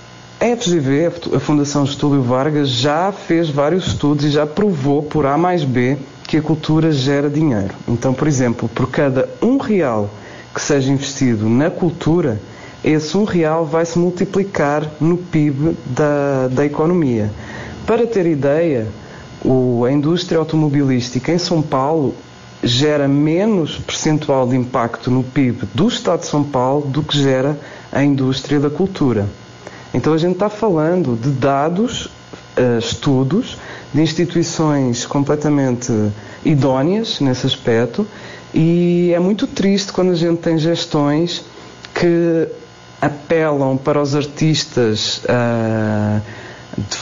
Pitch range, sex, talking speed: 125-165 Hz, male, 130 wpm